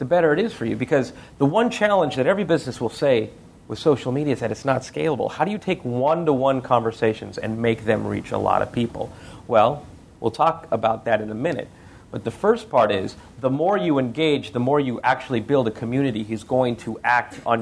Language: English